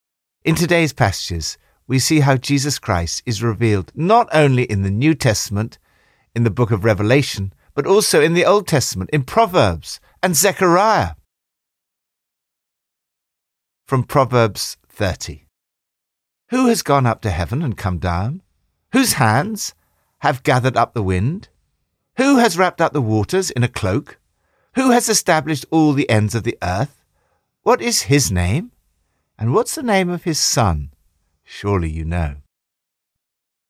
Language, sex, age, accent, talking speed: English, male, 50-69, British, 145 wpm